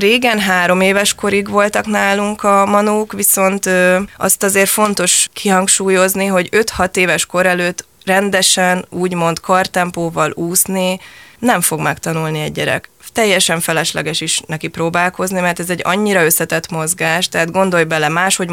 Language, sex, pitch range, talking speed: Hungarian, female, 165-190 Hz, 135 wpm